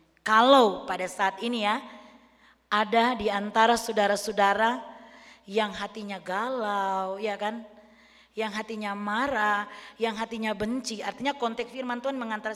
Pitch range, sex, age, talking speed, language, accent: 190-255 Hz, female, 20-39, 120 wpm, Indonesian, native